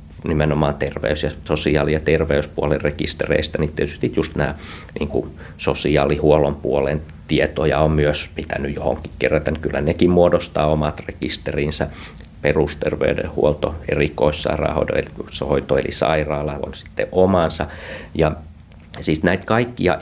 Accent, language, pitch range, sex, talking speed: native, Finnish, 75-85 Hz, male, 110 wpm